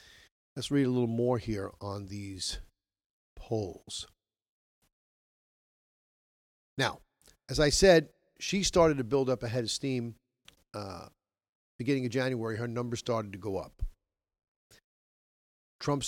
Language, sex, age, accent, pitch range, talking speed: English, male, 50-69, American, 115-135 Hz, 120 wpm